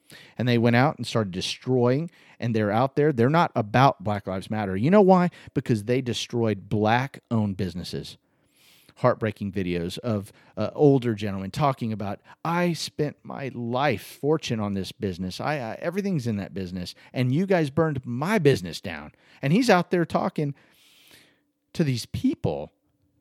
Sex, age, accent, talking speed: male, 40-59, American, 160 wpm